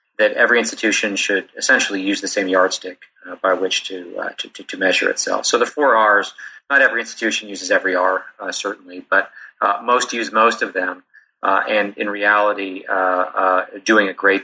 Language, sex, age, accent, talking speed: English, male, 40-59, American, 185 wpm